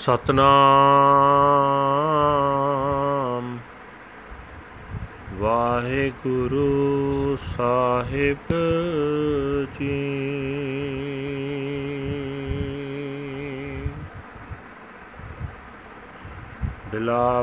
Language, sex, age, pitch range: Punjabi, male, 40-59, 130-145 Hz